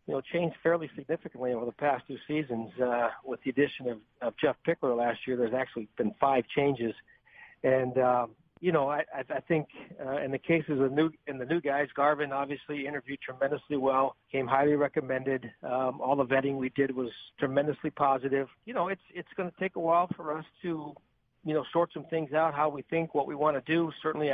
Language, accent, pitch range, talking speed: English, American, 135-155 Hz, 215 wpm